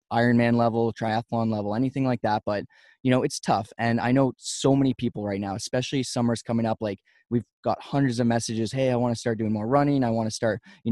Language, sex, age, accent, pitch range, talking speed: English, male, 20-39, American, 110-125 Hz, 235 wpm